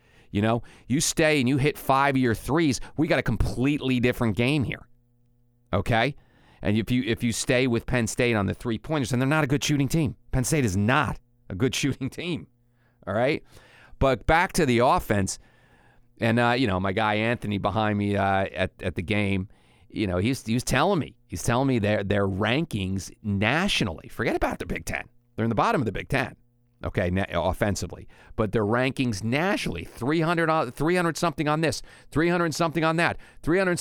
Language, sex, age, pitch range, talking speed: English, male, 40-59, 105-150 Hz, 200 wpm